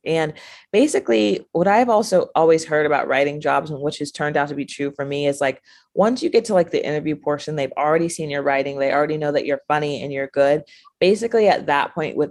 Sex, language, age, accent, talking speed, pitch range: female, English, 20-39, American, 240 wpm, 140-180 Hz